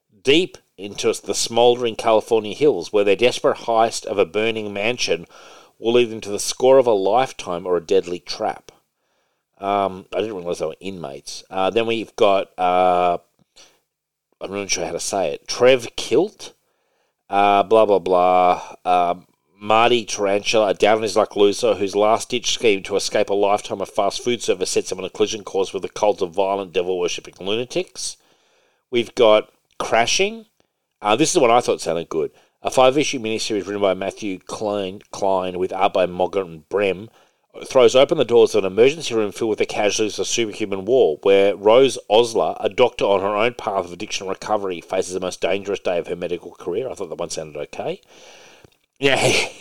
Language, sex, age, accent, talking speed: English, male, 40-59, Australian, 180 wpm